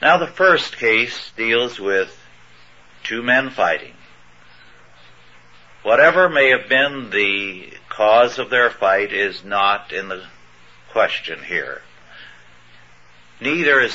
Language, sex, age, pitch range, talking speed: English, male, 60-79, 90-130 Hz, 110 wpm